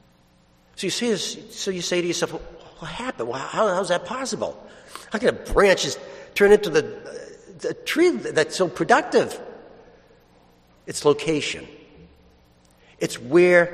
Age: 60-79